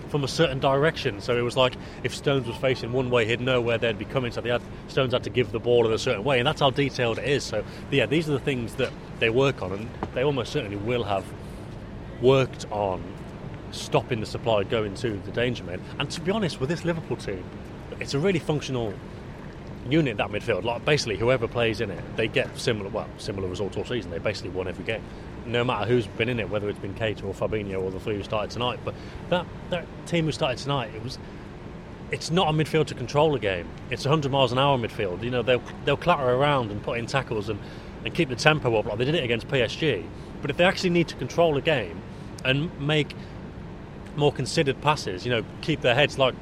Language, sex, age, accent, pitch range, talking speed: English, male, 30-49, British, 110-145 Hz, 235 wpm